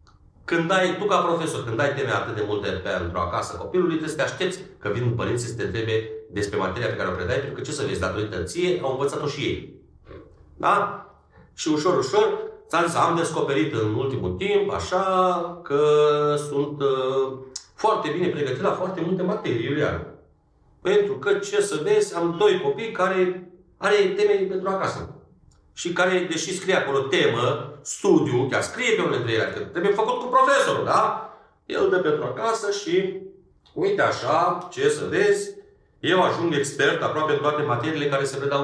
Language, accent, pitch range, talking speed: Romanian, native, 130-190 Hz, 180 wpm